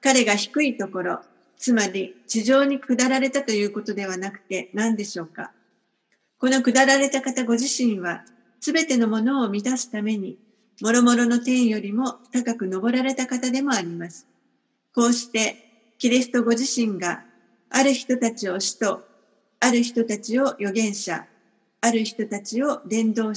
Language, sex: Japanese, female